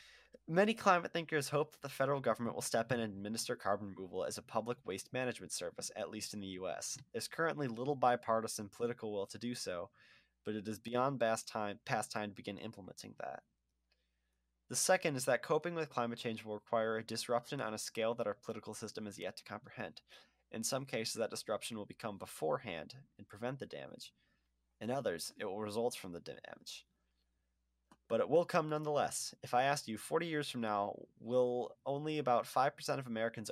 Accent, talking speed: American, 195 wpm